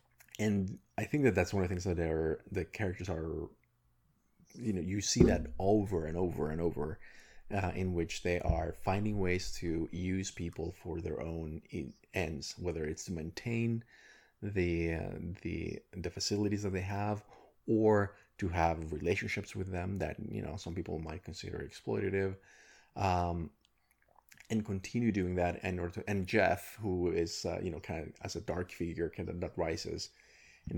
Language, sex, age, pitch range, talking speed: English, male, 30-49, 85-100 Hz, 175 wpm